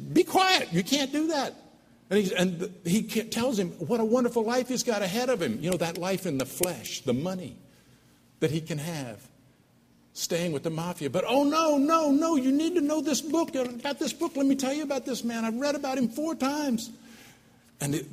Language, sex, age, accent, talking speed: English, male, 60-79, American, 220 wpm